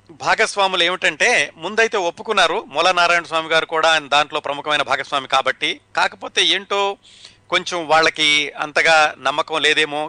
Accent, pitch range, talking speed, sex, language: native, 125-165 Hz, 125 wpm, male, Telugu